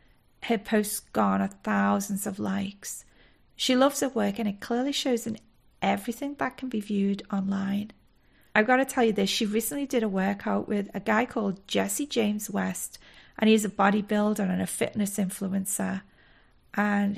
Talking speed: 170 wpm